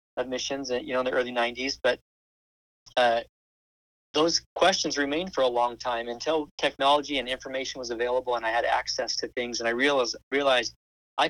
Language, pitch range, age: English, 115-135 Hz, 40-59